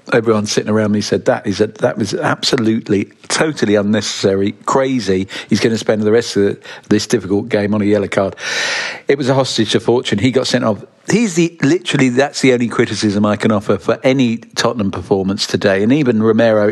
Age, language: 50-69, English